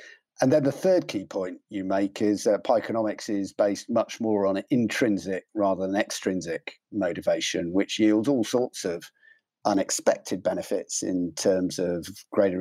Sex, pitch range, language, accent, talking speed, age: male, 95-140 Hz, English, British, 150 wpm, 50-69